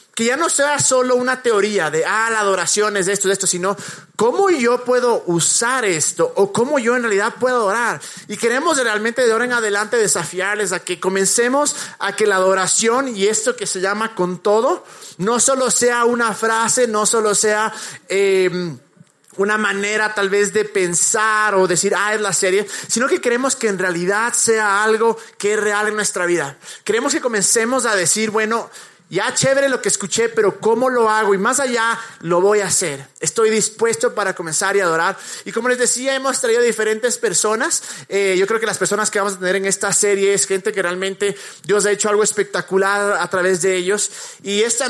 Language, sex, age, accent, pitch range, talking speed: Spanish, male, 30-49, Mexican, 195-230 Hz, 200 wpm